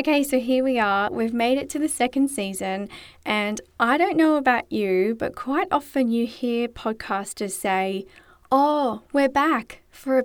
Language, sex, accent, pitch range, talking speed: English, female, Australian, 200-275 Hz, 175 wpm